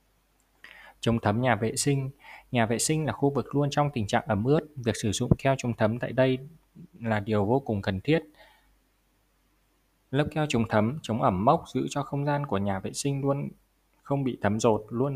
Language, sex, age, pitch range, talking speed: Vietnamese, male, 20-39, 105-140 Hz, 205 wpm